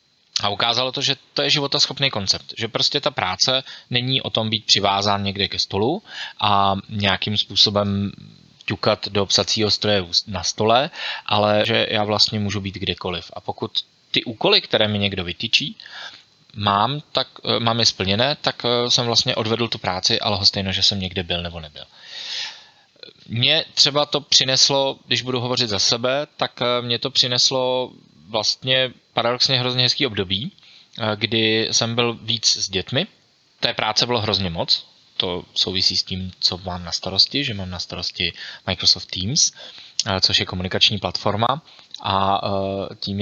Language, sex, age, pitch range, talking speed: Slovak, male, 20-39, 100-125 Hz, 155 wpm